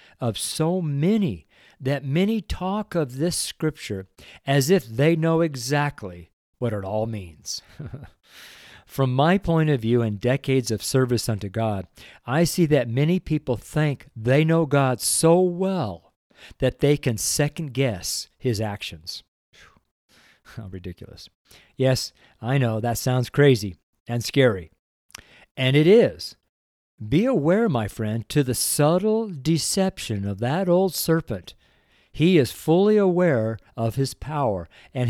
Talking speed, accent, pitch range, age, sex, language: 135 wpm, American, 110-155 Hz, 50-69, male, English